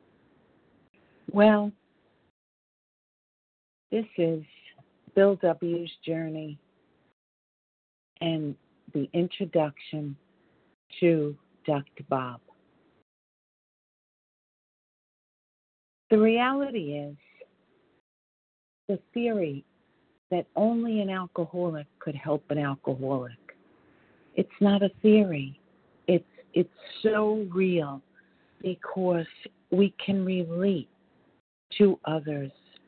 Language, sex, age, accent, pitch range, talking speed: English, female, 50-69, American, 160-205 Hz, 70 wpm